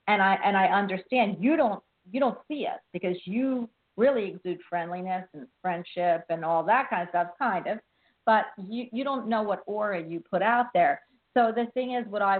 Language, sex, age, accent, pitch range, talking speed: English, female, 50-69, American, 170-210 Hz, 210 wpm